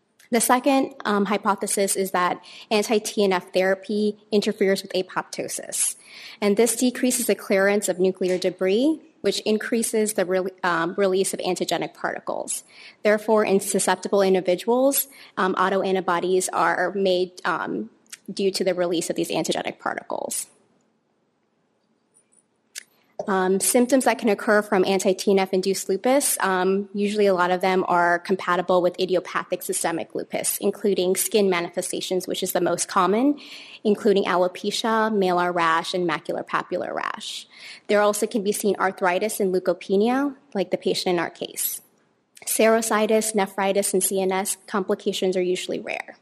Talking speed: 130 wpm